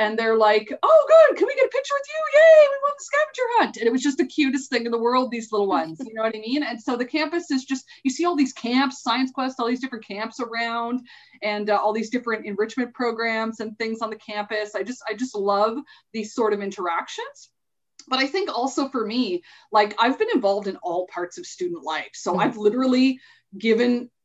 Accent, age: American, 20-39